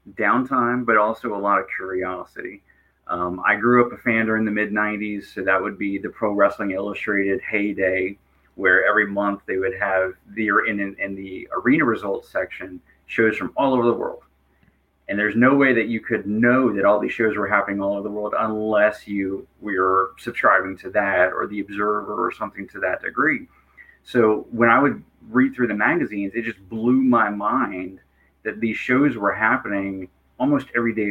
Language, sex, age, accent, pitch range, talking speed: English, male, 30-49, American, 100-115 Hz, 190 wpm